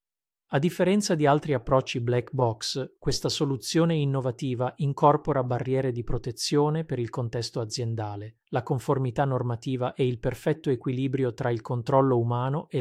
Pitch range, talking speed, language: 120-140 Hz, 140 wpm, Italian